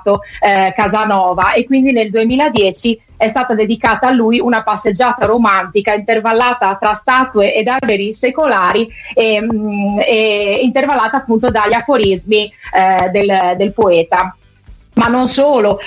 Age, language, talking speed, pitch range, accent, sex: 30-49, Italian, 130 wpm, 200-245 Hz, native, female